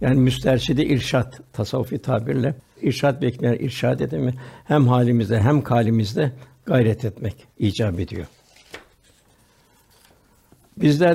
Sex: male